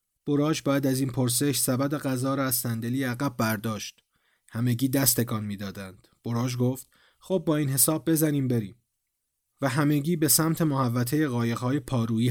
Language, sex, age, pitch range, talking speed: Persian, male, 40-59, 115-140 Hz, 145 wpm